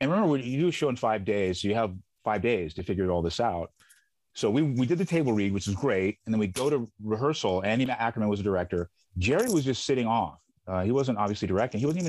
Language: English